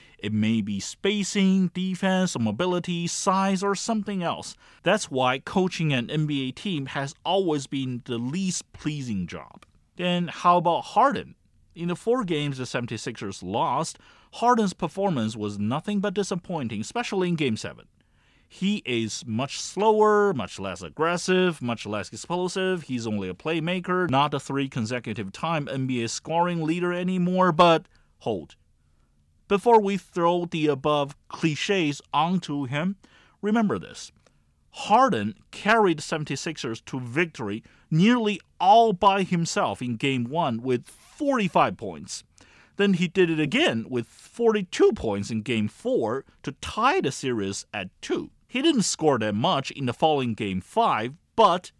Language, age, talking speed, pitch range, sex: English, 30-49, 140 wpm, 120-190 Hz, male